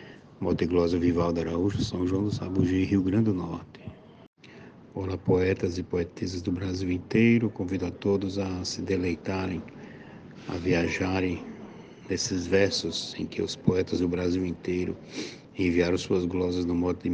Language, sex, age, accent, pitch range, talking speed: Portuguese, male, 60-79, Brazilian, 90-105 Hz, 150 wpm